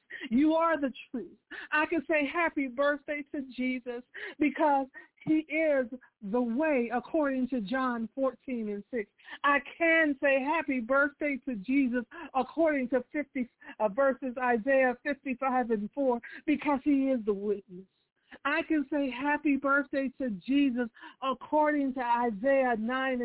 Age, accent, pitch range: 50-69, American, 220-280 Hz